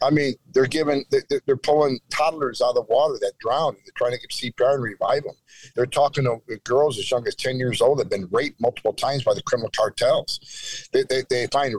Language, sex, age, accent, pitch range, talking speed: English, male, 50-69, American, 130-180 Hz, 220 wpm